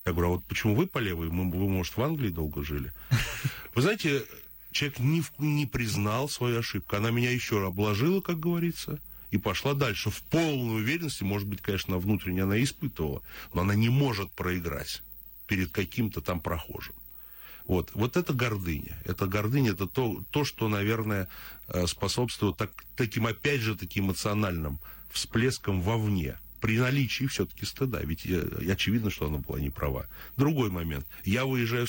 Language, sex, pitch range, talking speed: Russian, male, 90-125 Hz, 155 wpm